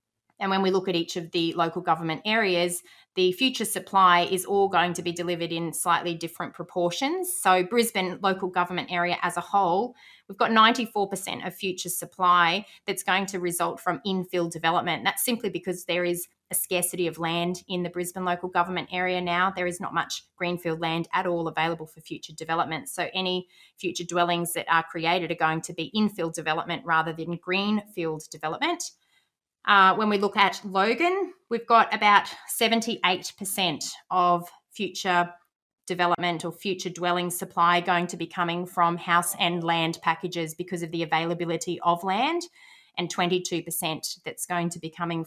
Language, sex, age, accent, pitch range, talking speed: English, female, 20-39, Australian, 170-195 Hz, 170 wpm